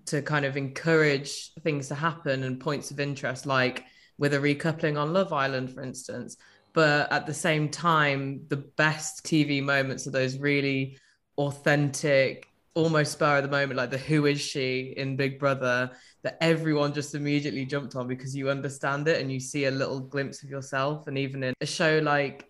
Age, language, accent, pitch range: 20-39, English, British, 135-150 Hz